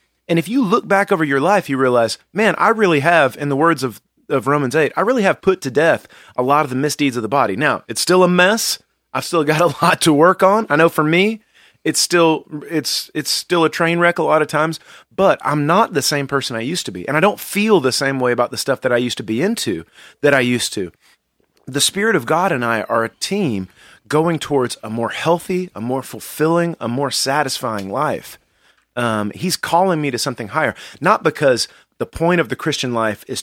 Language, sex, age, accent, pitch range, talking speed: English, male, 30-49, American, 115-170 Hz, 235 wpm